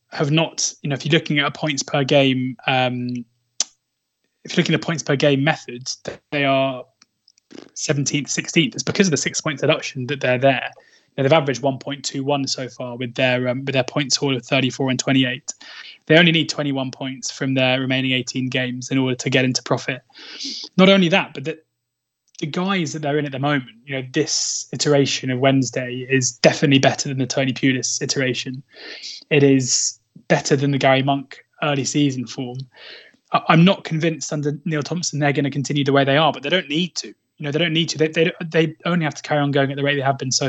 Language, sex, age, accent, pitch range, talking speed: English, male, 20-39, British, 130-150 Hz, 220 wpm